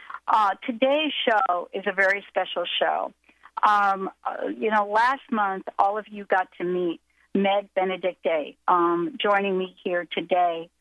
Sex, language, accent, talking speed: female, English, American, 150 wpm